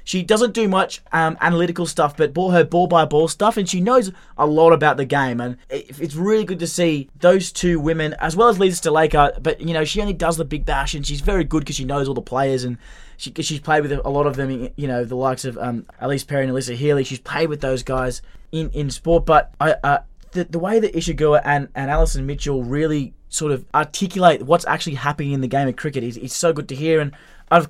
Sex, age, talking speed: male, 20-39, 250 wpm